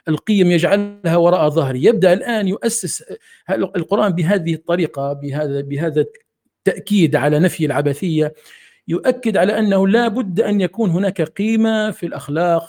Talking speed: 130 wpm